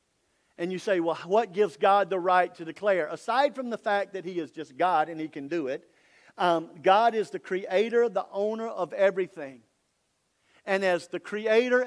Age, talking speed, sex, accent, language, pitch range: 50-69, 190 wpm, male, American, English, 190-230 Hz